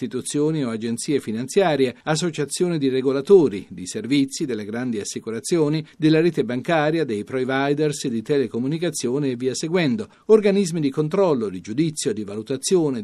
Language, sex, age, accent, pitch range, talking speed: Italian, male, 50-69, native, 125-165 Hz, 130 wpm